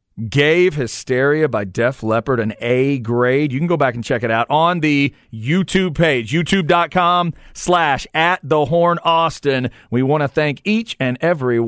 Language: English